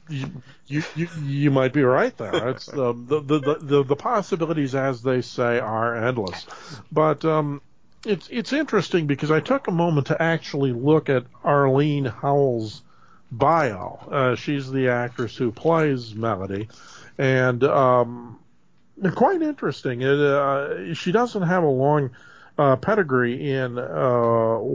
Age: 50-69